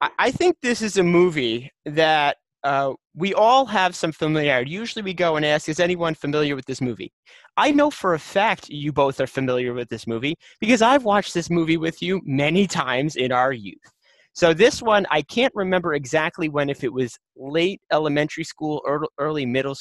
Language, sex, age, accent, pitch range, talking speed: English, male, 30-49, American, 145-190 Hz, 195 wpm